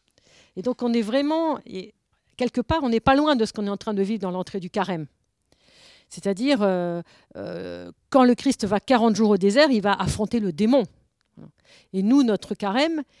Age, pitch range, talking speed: 50-69, 195-250 Hz, 200 wpm